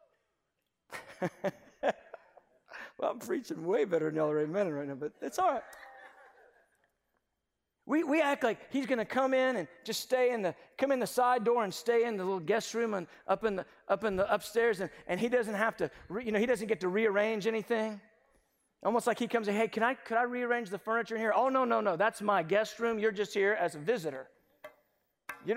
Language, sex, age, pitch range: English, male, 50-69, 210-290 Hz